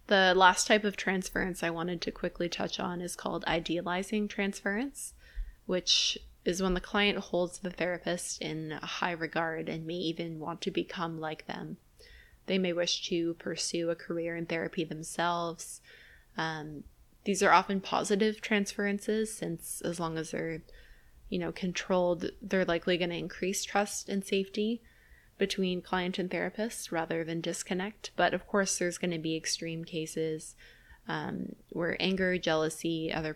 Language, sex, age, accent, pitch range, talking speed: English, female, 20-39, American, 165-195 Hz, 155 wpm